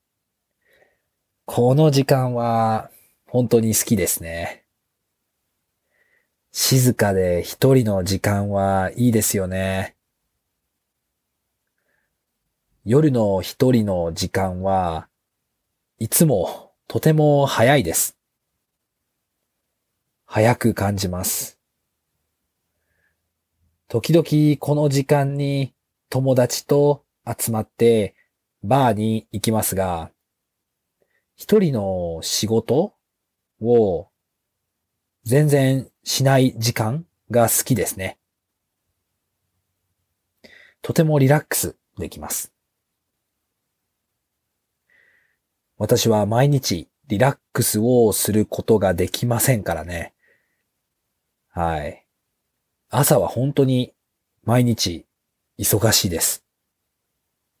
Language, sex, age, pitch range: English, male, 40-59, 95-130 Hz